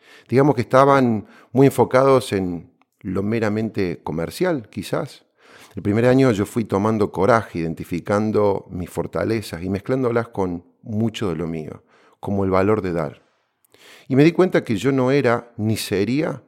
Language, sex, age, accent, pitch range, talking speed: Spanish, male, 40-59, Argentinian, 85-110 Hz, 155 wpm